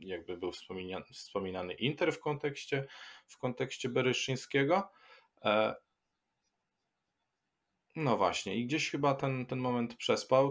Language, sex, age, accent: Polish, male, 20-39, native